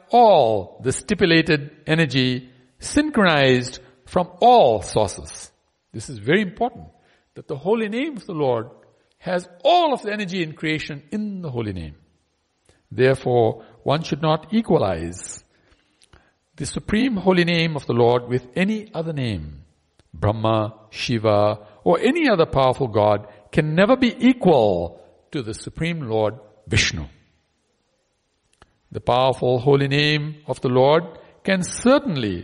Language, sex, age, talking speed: English, male, 60-79, 130 wpm